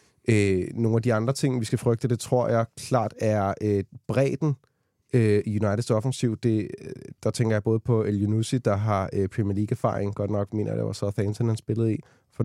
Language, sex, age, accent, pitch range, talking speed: Danish, male, 20-39, native, 105-120 Hz, 210 wpm